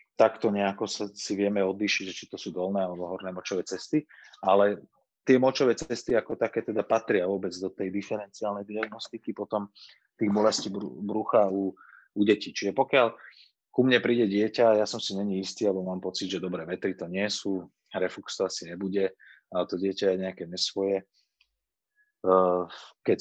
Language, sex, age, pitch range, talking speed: Slovak, male, 30-49, 95-110 Hz, 170 wpm